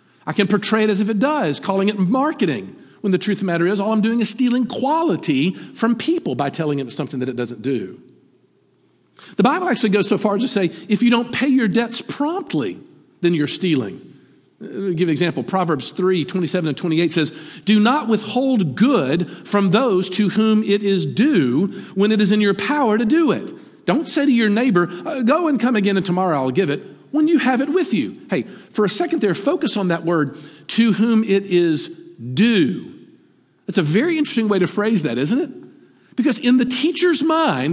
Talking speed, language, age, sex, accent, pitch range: 210 wpm, English, 50-69, male, American, 175-255 Hz